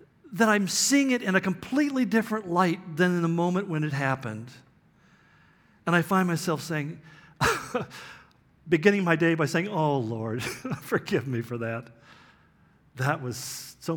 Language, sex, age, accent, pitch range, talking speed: English, male, 50-69, American, 140-185 Hz, 150 wpm